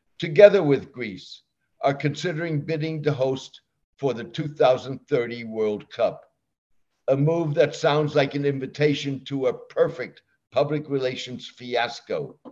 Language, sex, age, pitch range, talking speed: English, male, 60-79, 130-155 Hz, 125 wpm